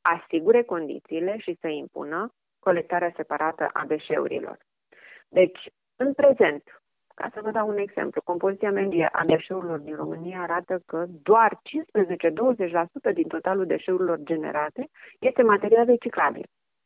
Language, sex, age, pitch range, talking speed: Romanian, female, 30-49, 165-225 Hz, 125 wpm